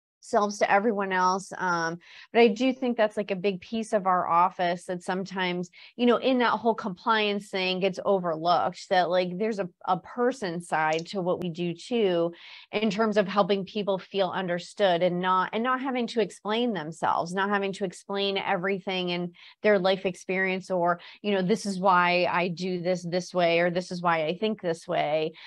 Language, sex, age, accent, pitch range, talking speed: English, female, 30-49, American, 175-205 Hz, 195 wpm